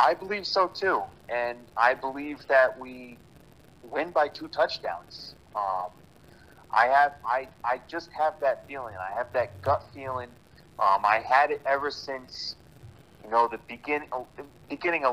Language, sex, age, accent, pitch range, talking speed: English, male, 30-49, American, 105-145 Hz, 155 wpm